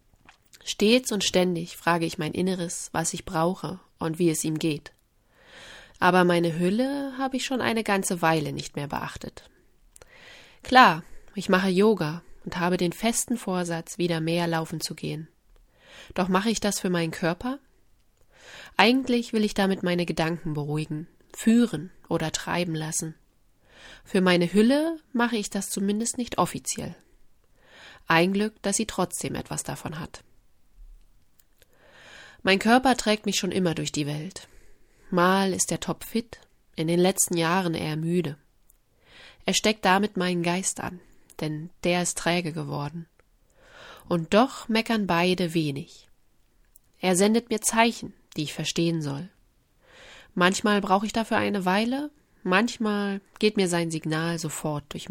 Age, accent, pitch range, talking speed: 20-39, German, 165-215 Hz, 145 wpm